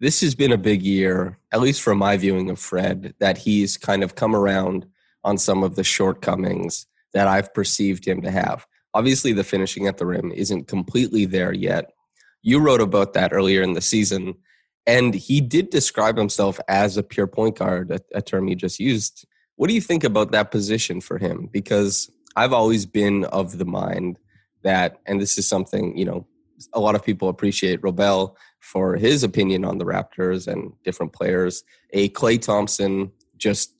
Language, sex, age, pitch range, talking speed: English, male, 20-39, 95-105 Hz, 190 wpm